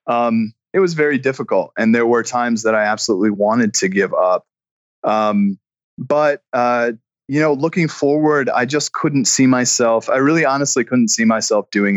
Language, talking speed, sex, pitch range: English, 175 wpm, male, 105-140 Hz